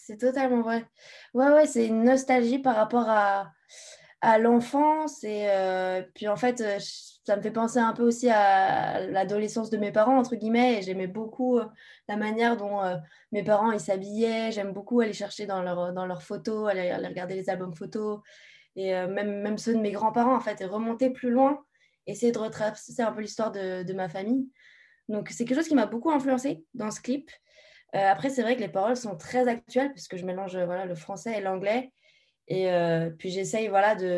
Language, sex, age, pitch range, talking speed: French, female, 20-39, 190-235 Hz, 205 wpm